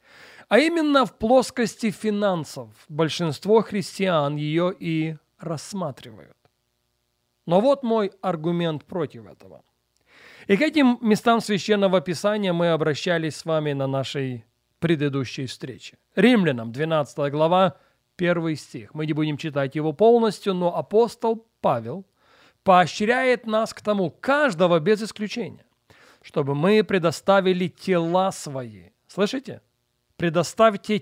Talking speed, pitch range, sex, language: 110 wpm, 150-205 Hz, male, Russian